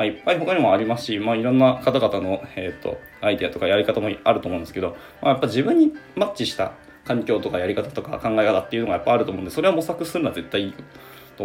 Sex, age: male, 20-39